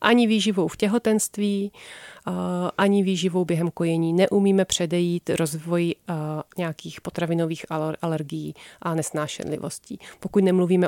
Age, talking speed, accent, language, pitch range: 30-49, 100 wpm, native, Czech, 160-190 Hz